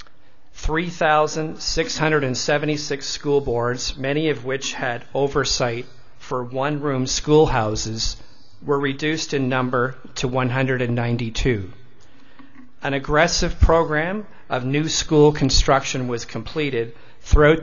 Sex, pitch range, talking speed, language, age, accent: male, 120-150 Hz, 95 wpm, English, 40-59, American